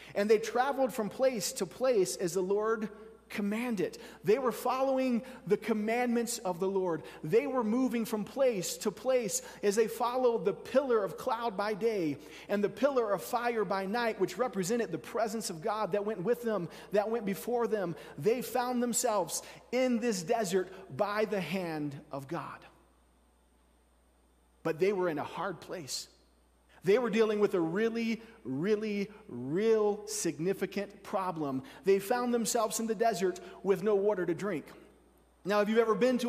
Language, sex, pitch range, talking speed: English, male, 190-235 Hz, 165 wpm